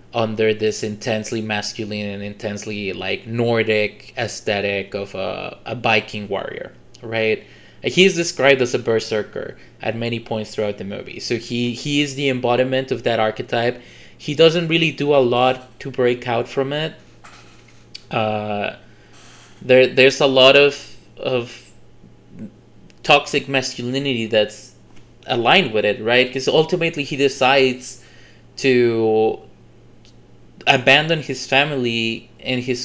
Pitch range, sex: 110-135 Hz, male